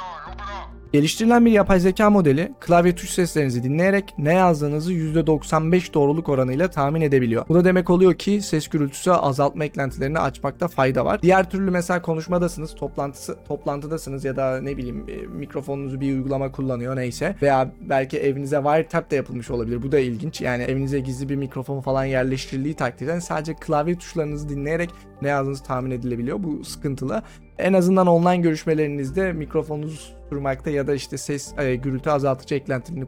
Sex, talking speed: male, 155 wpm